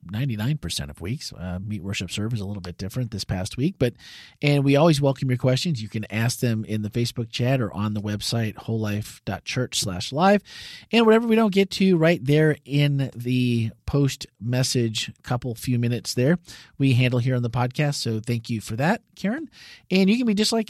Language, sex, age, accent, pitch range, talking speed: English, male, 40-59, American, 115-165 Hz, 200 wpm